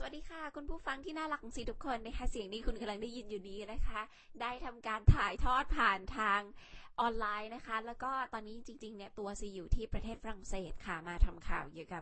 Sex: female